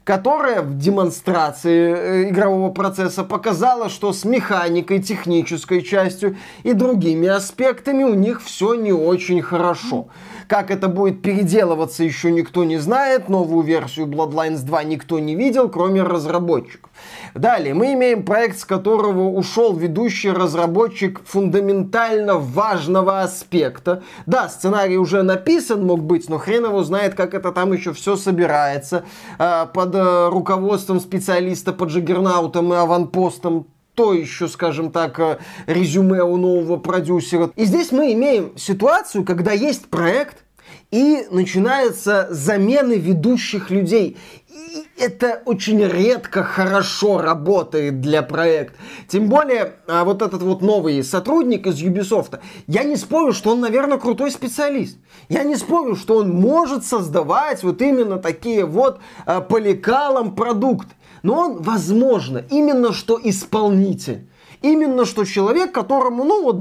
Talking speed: 130 wpm